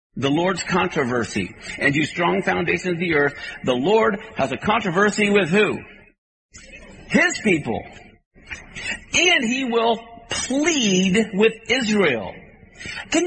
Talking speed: 120 wpm